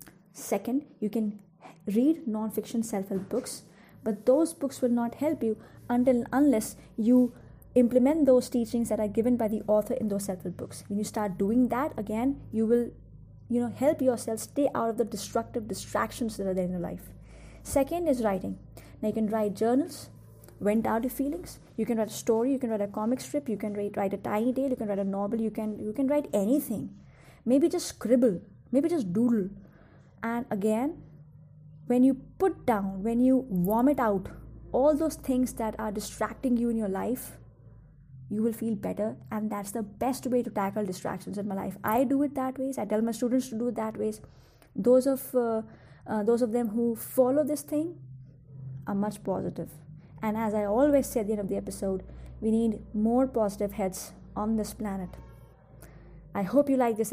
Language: English